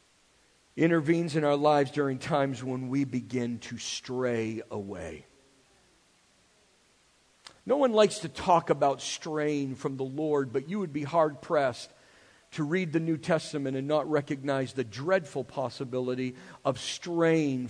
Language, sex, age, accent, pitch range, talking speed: English, male, 50-69, American, 145-185 Hz, 135 wpm